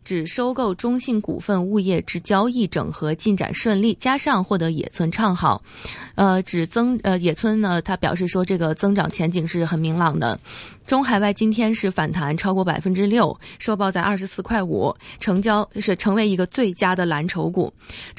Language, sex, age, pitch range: Chinese, female, 20-39, 175-220 Hz